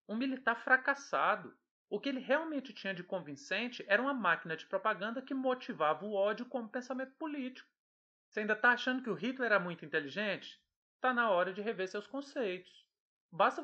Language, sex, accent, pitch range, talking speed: Portuguese, male, Brazilian, 170-250 Hz, 175 wpm